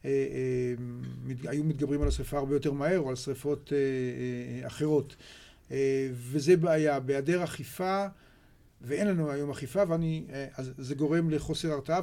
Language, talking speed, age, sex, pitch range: Hebrew, 120 wpm, 50-69, male, 135-165 Hz